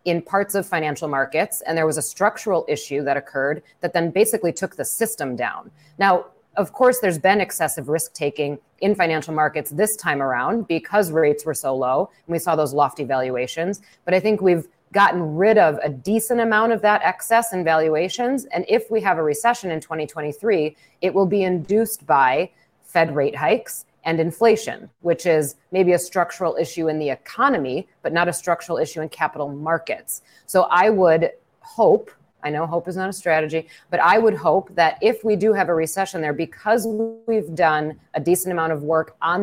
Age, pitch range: 30-49, 155-195 Hz